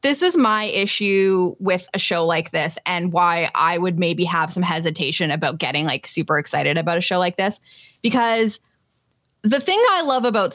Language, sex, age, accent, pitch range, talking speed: English, female, 20-39, American, 180-240 Hz, 190 wpm